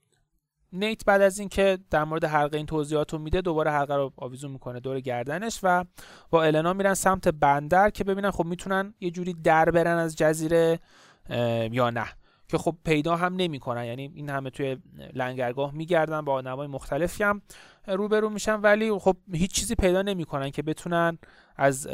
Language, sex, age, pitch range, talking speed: Persian, male, 30-49, 140-190 Hz, 170 wpm